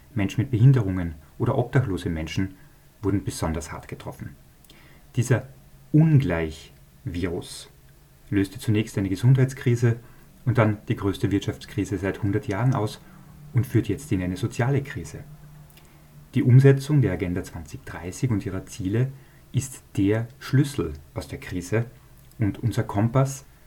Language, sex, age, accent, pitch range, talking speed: German, male, 40-59, German, 95-135 Hz, 125 wpm